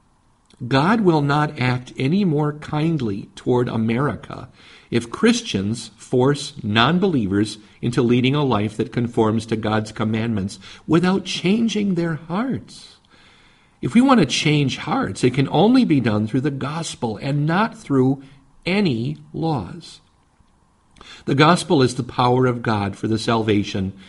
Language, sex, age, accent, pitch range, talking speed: English, male, 50-69, American, 105-150 Hz, 135 wpm